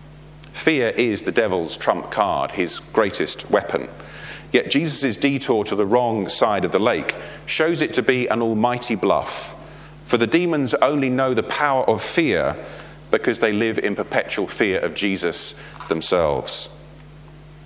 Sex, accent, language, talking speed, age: male, British, English, 150 wpm, 40-59